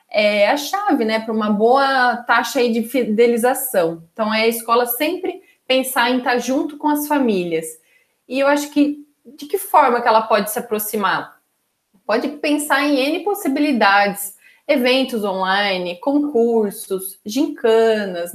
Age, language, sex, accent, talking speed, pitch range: 20-39, Portuguese, female, Brazilian, 145 wpm, 195-260 Hz